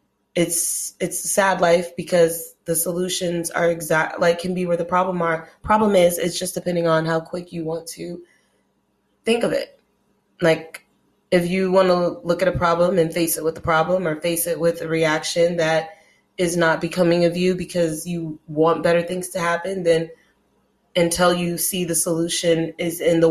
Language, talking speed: English, 190 wpm